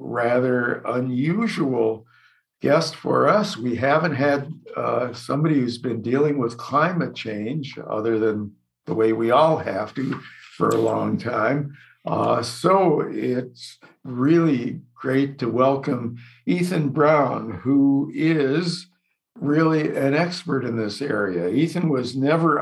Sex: male